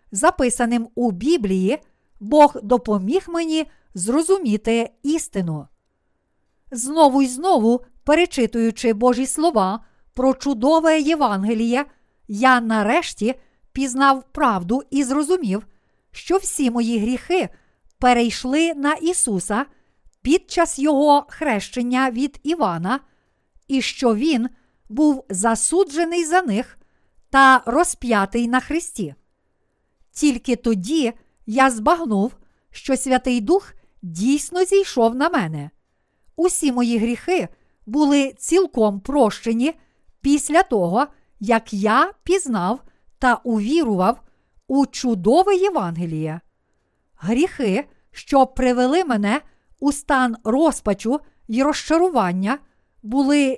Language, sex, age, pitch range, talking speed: Ukrainian, female, 50-69, 230-300 Hz, 95 wpm